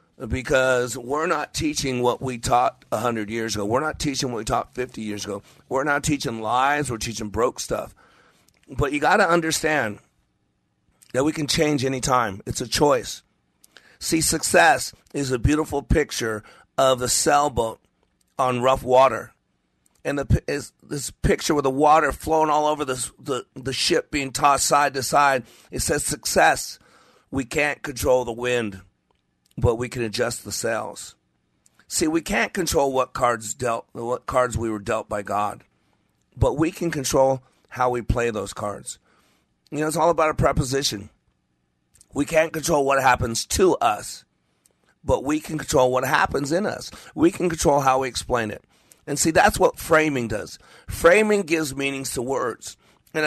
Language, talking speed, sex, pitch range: English, 170 wpm, male, 115-150 Hz